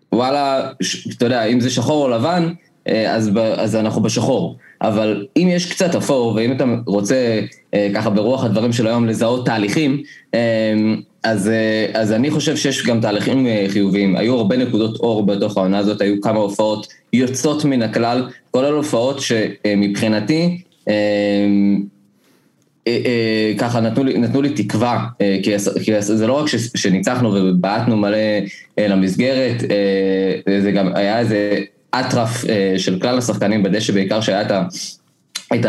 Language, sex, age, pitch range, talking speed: Hebrew, male, 20-39, 100-120 Hz, 160 wpm